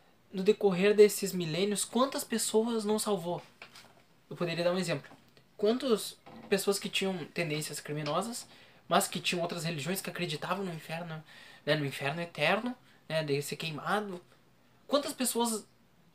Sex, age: male, 20-39